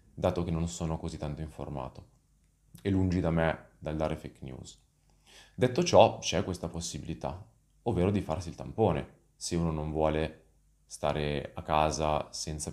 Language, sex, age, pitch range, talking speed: Italian, male, 30-49, 80-90 Hz, 155 wpm